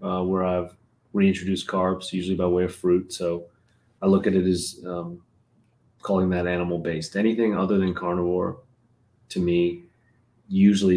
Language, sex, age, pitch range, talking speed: English, male, 30-49, 85-105 Hz, 150 wpm